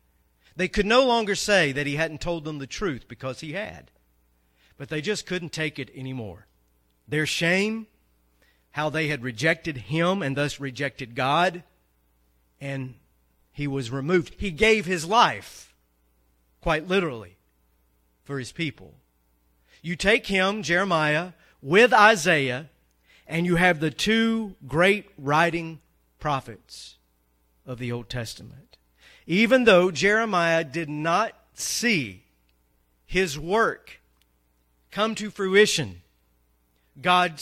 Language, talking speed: English, 120 wpm